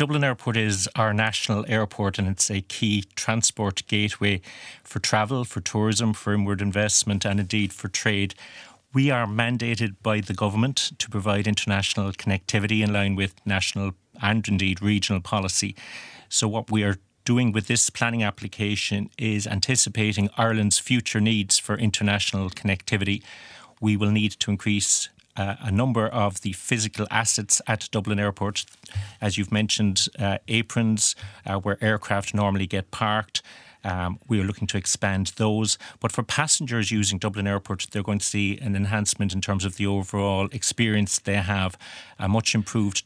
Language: English